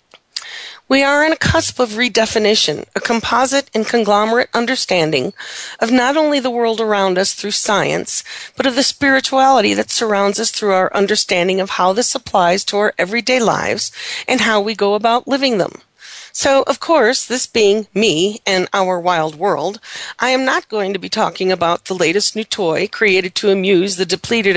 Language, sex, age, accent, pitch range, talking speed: English, female, 40-59, American, 200-260 Hz, 180 wpm